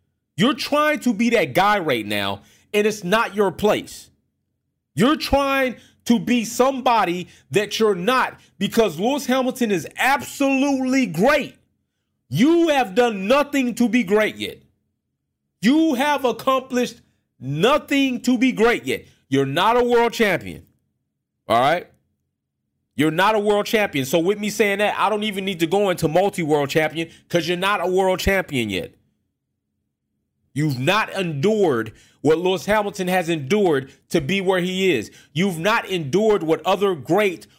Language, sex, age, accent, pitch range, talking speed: English, male, 40-59, American, 160-220 Hz, 150 wpm